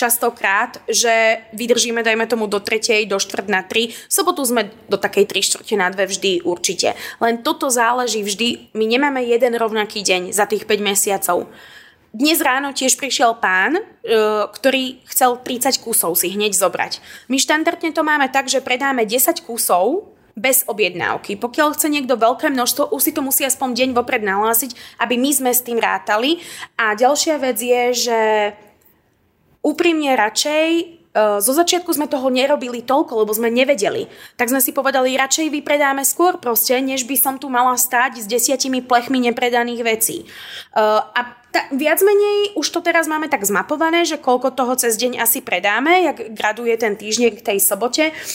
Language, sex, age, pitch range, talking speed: Czech, female, 20-39, 220-275 Hz, 170 wpm